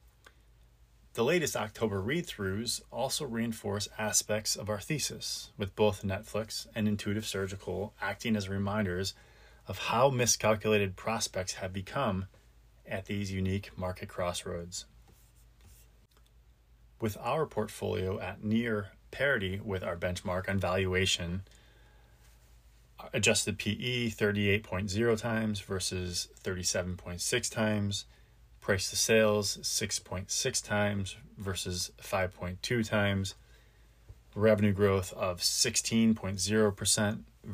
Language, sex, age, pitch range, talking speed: English, male, 20-39, 90-110 Hz, 95 wpm